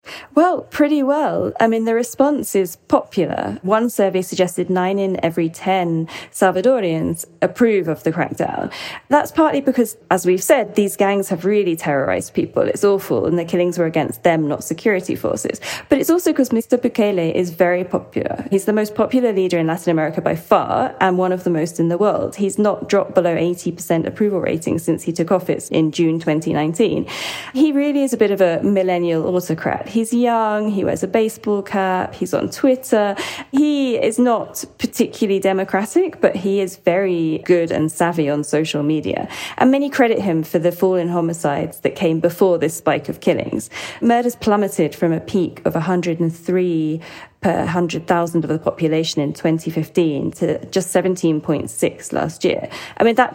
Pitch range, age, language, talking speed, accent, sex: 165-215 Hz, 10-29, English, 175 wpm, British, female